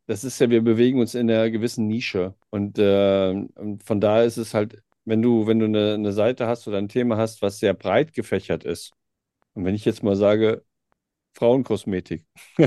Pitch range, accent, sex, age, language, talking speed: 105-125 Hz, German, male, 50-69, German, 190 wpm